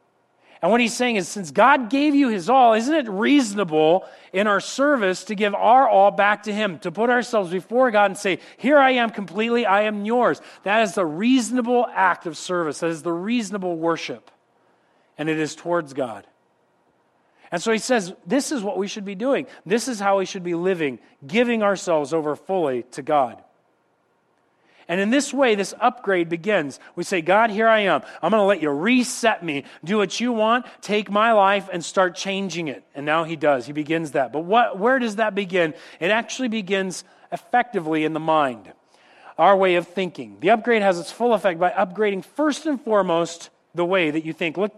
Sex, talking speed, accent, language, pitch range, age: male, 200 wpm, American, English, 170-230 Hz, 40-59